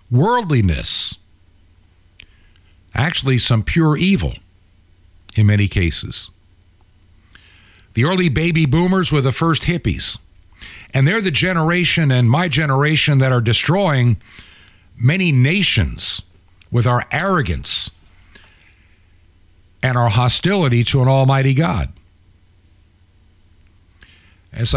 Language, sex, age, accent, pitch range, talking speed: English, male, 50-69, American, 90-140 Hz, 95 wpm